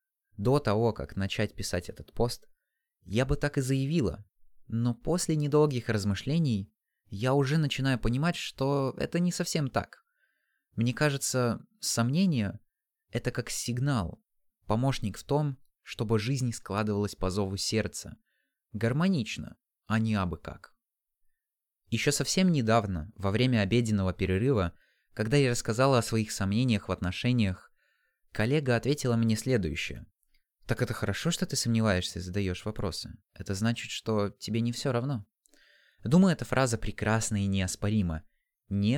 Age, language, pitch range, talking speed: 20-39, Russian, 100-130 Hz, 135 wpm